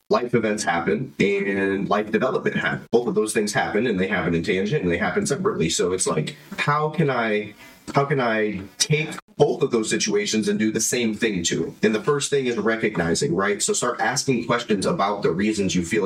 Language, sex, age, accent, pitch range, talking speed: English, male, 30-49, American, 95-135 Hz, 215 wpm